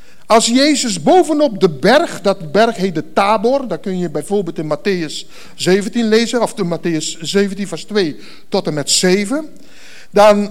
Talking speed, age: 165 wpm, 60-79